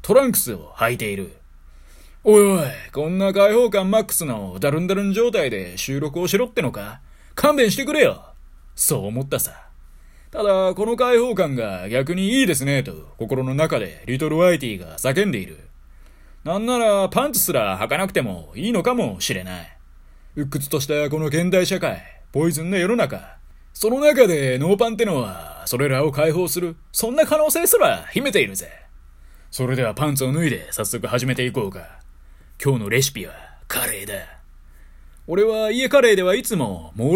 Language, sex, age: Japanese, male, 20-39